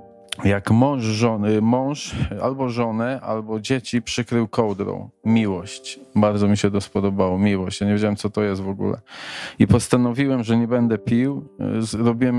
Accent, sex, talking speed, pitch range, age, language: native, male, 155 wpm, 105-120 Hz, 20-39, Polish